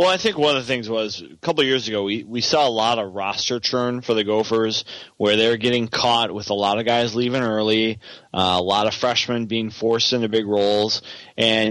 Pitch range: 95-115 Hz